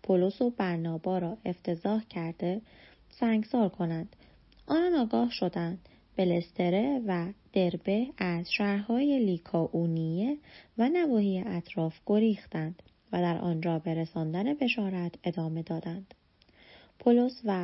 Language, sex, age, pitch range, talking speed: Persian, female, 30-49, 170-215 Hz, 115 wpm